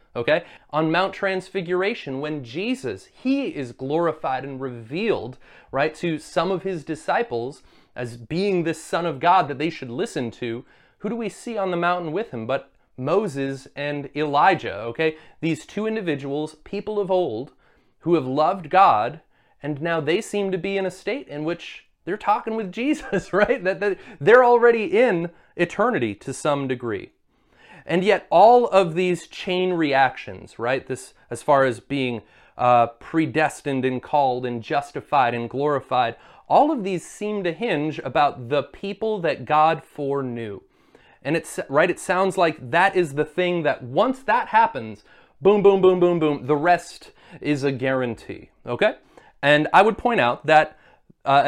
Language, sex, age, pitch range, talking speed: English, male, 30-49, 140-190 Hz, 165 wpm